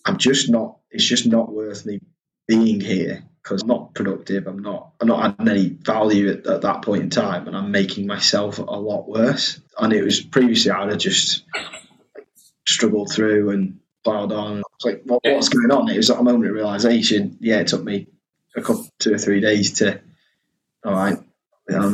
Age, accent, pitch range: 20-39, British, 100-150 Hz